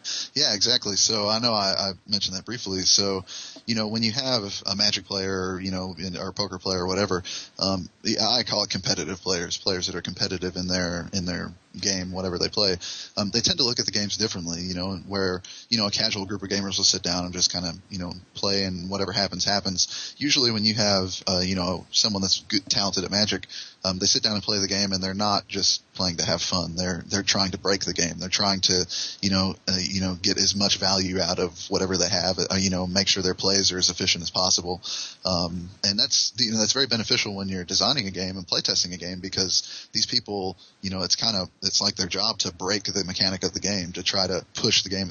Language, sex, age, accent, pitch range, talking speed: English, male, 20-39, American, 90-100 Hz, 245 wpm